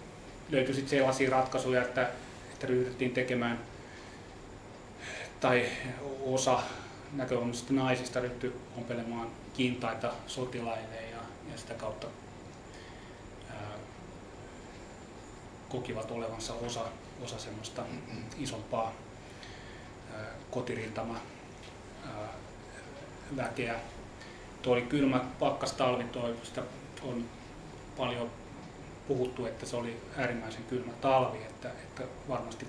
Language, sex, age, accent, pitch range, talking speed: Finnish, male, 30-49, native, 115-130 Hz, 85 wpm